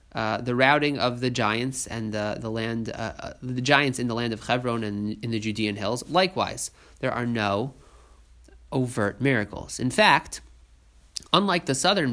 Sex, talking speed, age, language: male, 175 wpm, 30-49, English